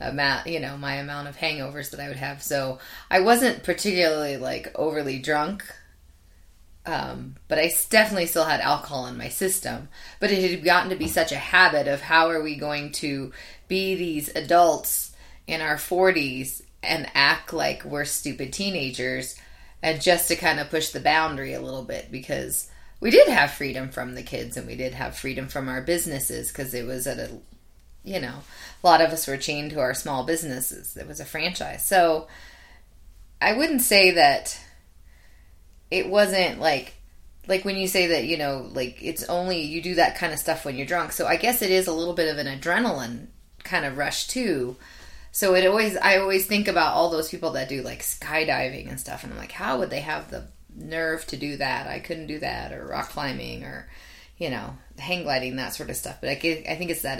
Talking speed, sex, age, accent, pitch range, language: 200 wpm, female, 20-39, American, 130-175 Hz, English